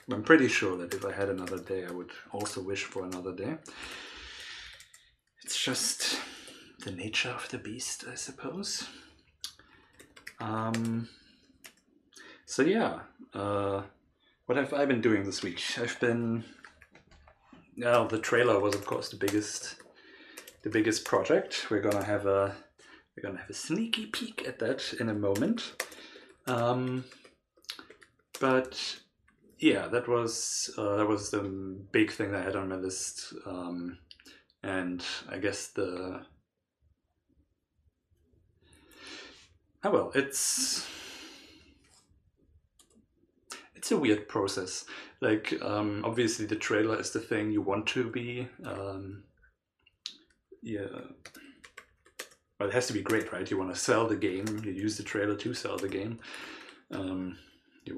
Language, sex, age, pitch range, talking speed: English, male, 30-49, 95-115 Hz, 135 wpm